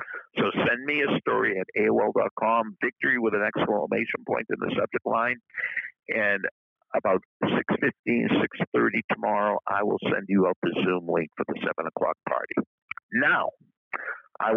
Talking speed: 150 wpm